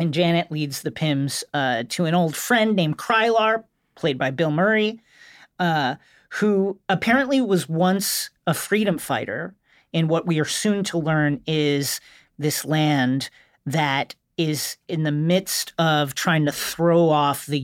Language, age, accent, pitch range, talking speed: English, 40-59, American, 150-190 Hz, 155 wpm